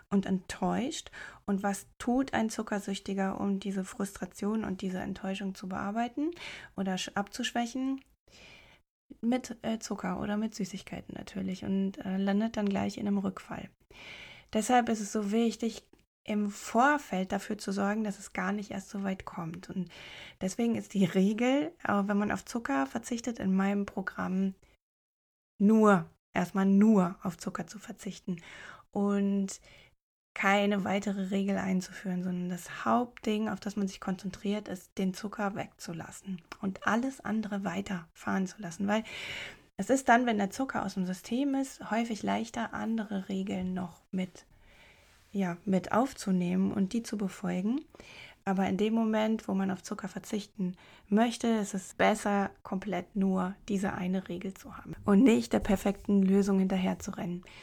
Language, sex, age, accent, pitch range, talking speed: German, female, 20-39, German, 190-220 Hz, 145 wpm